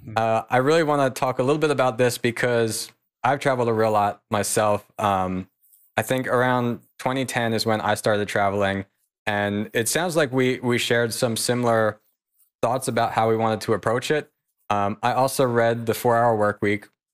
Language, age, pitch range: English, 20-39, 110-130 Hz